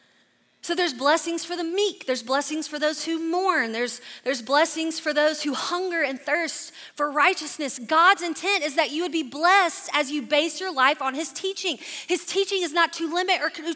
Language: English